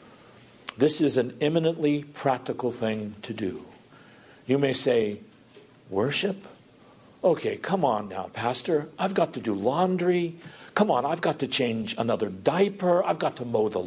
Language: English